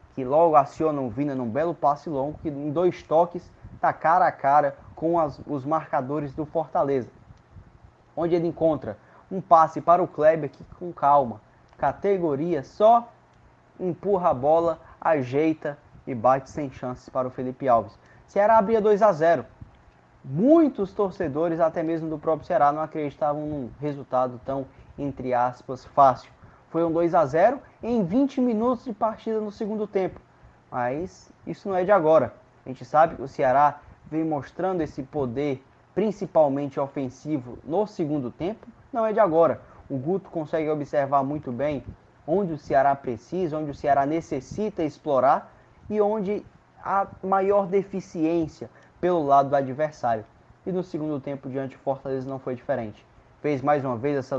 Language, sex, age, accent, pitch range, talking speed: Portuguese, male, 20-39, Brazilian, 135-180 Hz, 155 wpm